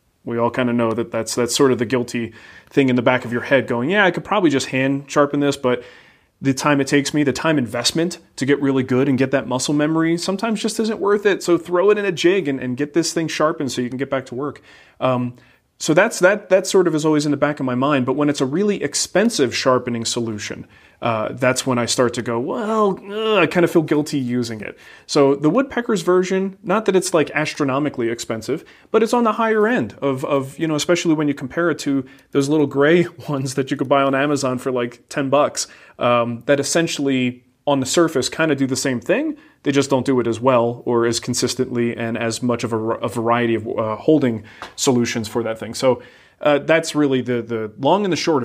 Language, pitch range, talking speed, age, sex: English, 125-165 Hz, 240 wpm, 30-49, male